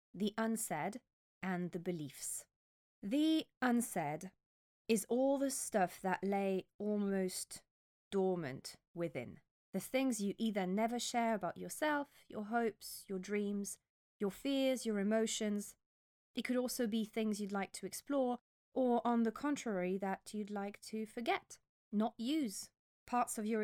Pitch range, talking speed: 185-240 Hz, 140 wpm